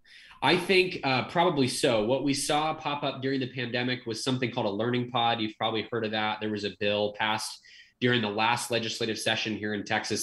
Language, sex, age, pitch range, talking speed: English, male, 20-39, 105-125 Hz, 215 wpm